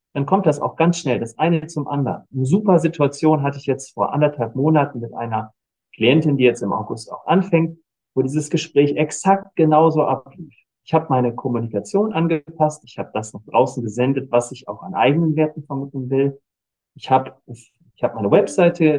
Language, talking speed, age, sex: German, 185 wpm, 40-59, male